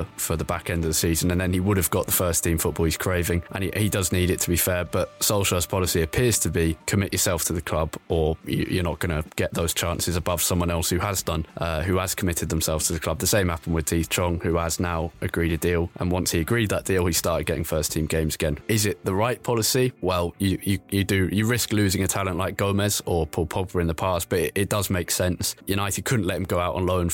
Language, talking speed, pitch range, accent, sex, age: English, 270 wpm, 85-100 Hz, British, male, 20-39